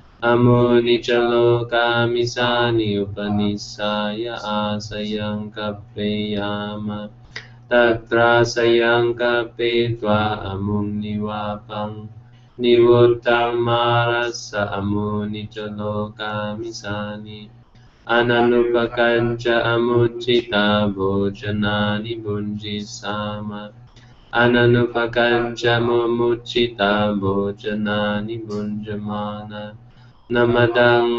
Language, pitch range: English, 105-120 Hz